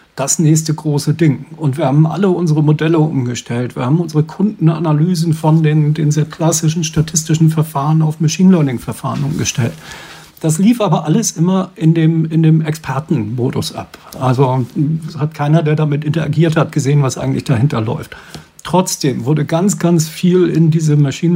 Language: English